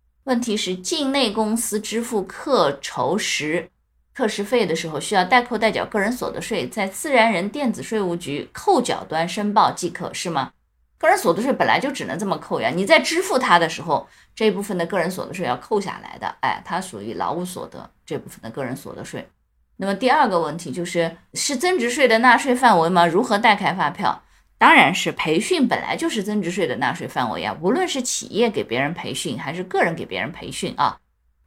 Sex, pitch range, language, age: female, 175-245 Hz, Chinese, 20-39